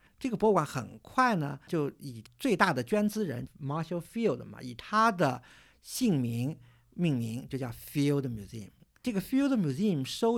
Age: 50-69